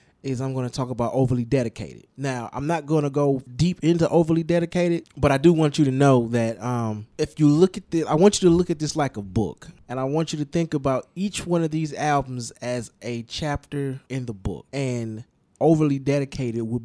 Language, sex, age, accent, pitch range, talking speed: English, male, 20-39, American, 120-150 Hz, 230 wpm